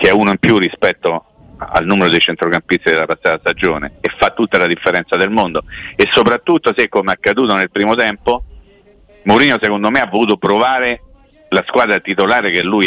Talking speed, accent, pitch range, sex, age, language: 185 wpm, native, 90-115 Hz, male, 50-69, Italian